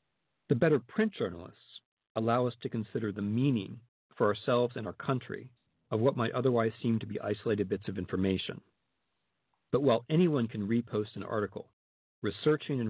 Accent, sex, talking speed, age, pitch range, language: American, male, 165 wpm, 50-69, 105-125 Hz, English